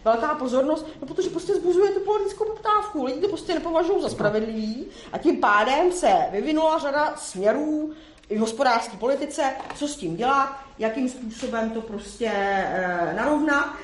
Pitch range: 220-300 Hz